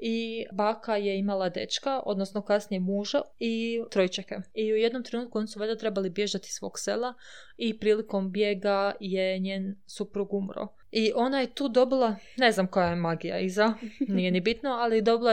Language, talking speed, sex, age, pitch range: Croatian, 175 wpm, female, 20-39, 195-235 Hz